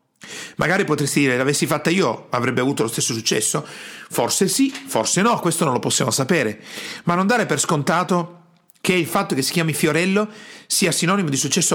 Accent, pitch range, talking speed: native, 145-200 Hz, 185 wpm